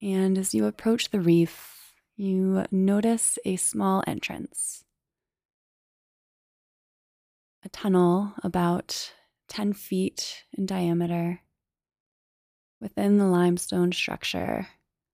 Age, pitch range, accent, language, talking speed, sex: 20-39, 170-195 Hz, American, English, 85 wpm, female